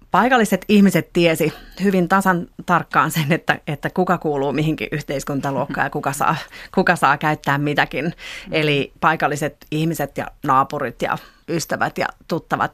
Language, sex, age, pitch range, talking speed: Finnish, female, 30-49, 150-175 Hz, 135 wpm